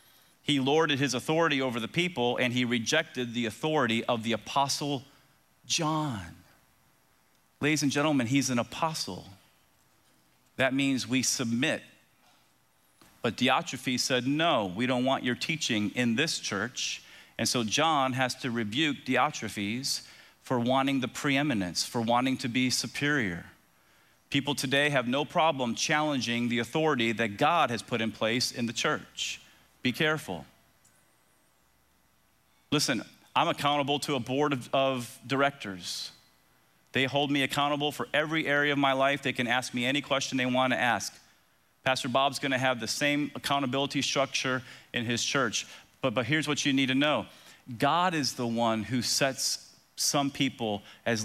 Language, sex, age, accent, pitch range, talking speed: English, male, 40-59, American, 115-140 Hz, 150 wpm